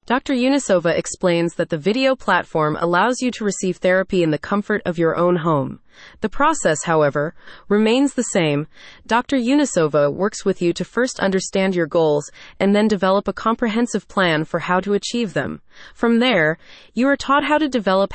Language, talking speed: English, 180 wpm